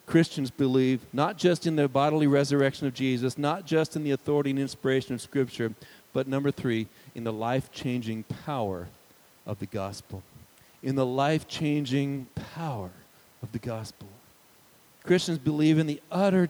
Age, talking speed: 50-69, 150 wpm